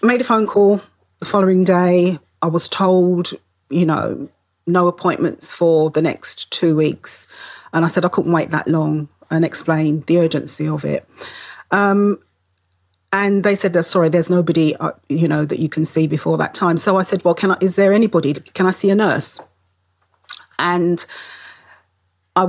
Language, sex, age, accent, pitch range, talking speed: English, female, 40-59, British, 160-185 Hz, 180 wpm